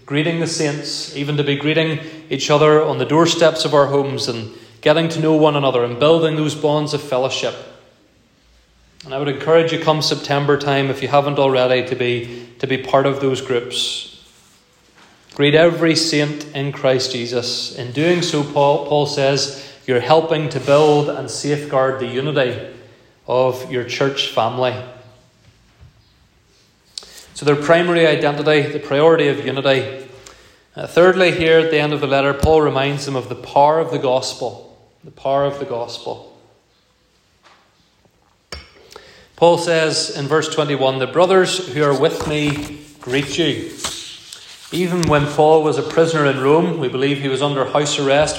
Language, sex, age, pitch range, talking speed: English, male, 30-49, 135-155 Hz, 160 wpm